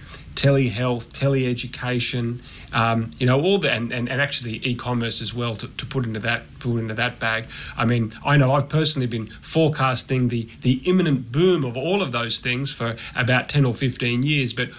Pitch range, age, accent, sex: 115-130 Hz, 30-49, Australian, male